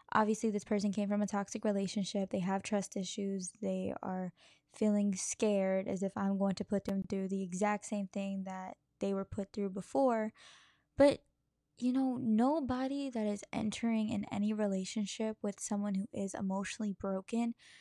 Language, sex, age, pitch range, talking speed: English, female, 10-29, 200-235 Hz, 170 wpm